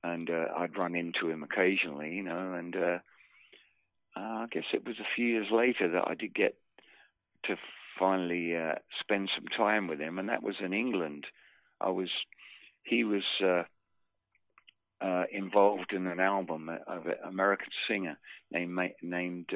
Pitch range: 90-105 Hz